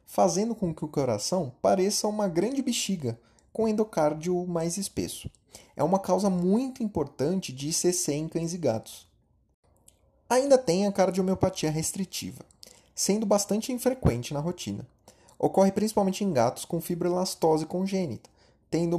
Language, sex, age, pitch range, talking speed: Portuguese, male, 30-49, 145-195 Hz, 135 wpm